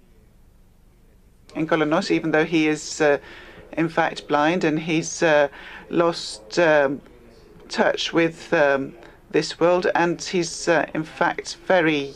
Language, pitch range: Greek, 155-180 Hz